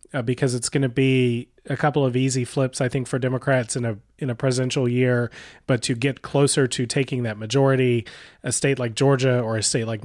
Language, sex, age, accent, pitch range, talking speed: English, male, 30-49, American, 120-150 Hz, 220 wpm